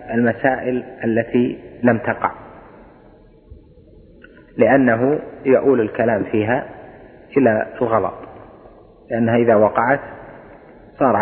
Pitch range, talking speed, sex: 110-125 Hz, 80 wpm, male